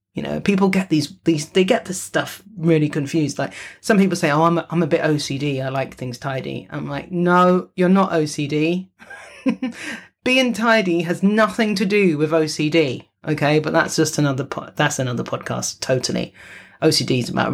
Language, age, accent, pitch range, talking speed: English, 30-49, British, 155-220 Hz, 185 wpm